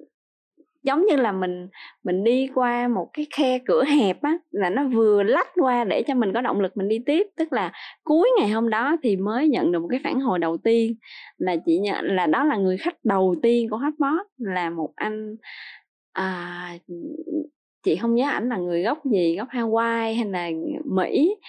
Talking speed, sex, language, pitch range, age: 200 wpm, female, Vietnamese, 185-270 Hz, 20-39